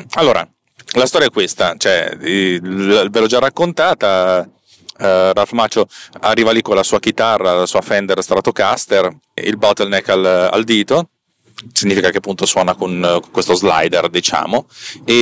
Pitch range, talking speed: 90-120 Hz, 160 wpm